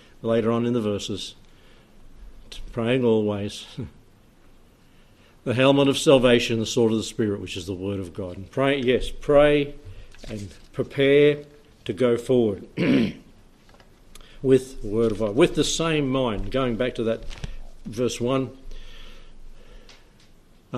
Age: 60-79